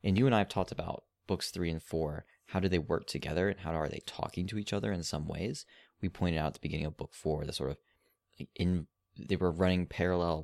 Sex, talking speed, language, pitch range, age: male, 255 wpm, English, 75-90 Hz, 20-39